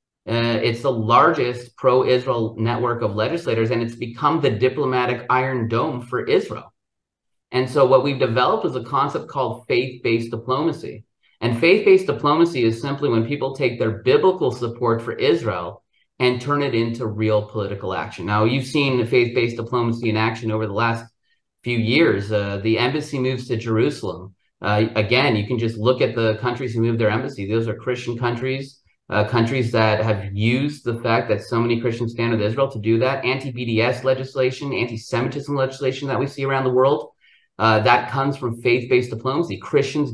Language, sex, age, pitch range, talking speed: English, male, 30-49, 115-130 Hz, 175 wpm